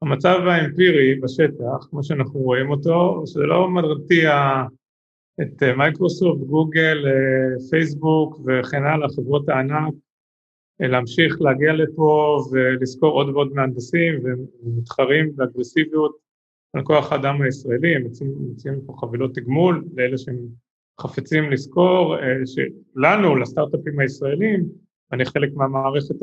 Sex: male